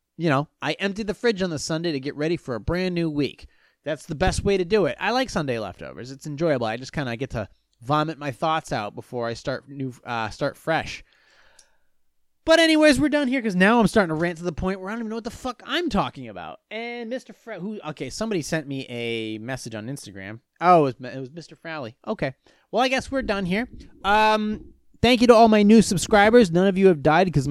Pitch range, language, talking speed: 130-185 Hz, English, 245 wpm